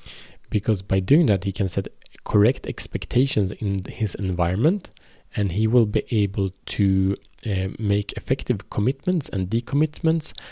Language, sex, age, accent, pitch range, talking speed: Swedish, male, 30-49, Norwegian, 95-125 Hz, 135 wpm